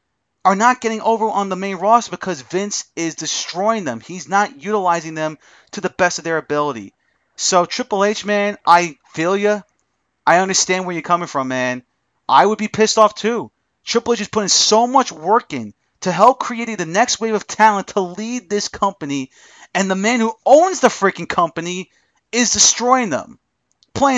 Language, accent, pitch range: English, American, 175-225 Hz